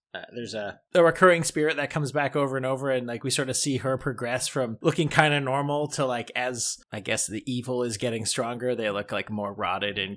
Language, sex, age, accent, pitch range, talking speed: English, male, 30-49, American, 115-140 Hz, 240 wpm